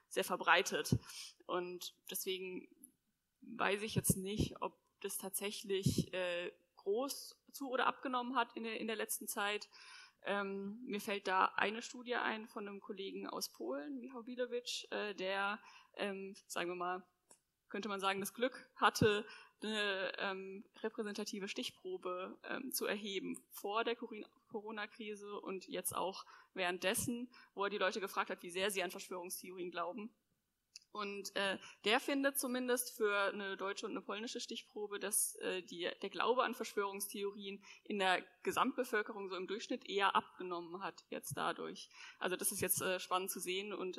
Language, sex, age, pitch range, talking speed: German, female, 20-39, 185-235 Hz, 155 wpm